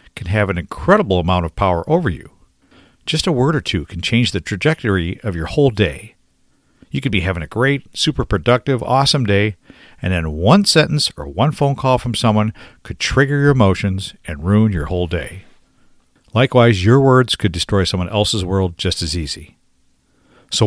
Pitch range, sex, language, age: 90-135 Hz, male, English, 50-69